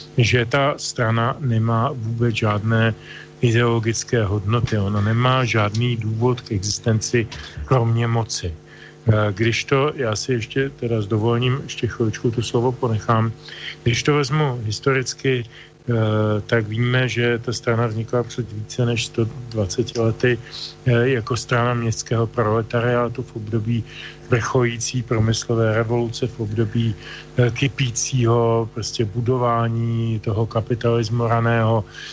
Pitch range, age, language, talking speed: 115-125 Hz, 40-59, Slovak, 110 wpm